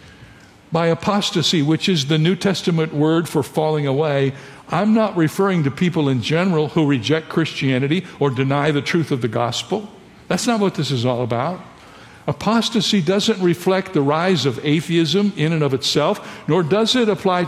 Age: 60-79